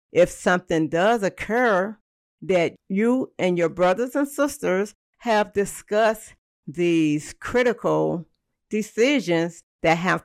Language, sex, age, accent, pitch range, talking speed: English, female, 60-79, American, 150-190 Hz, 105 wpm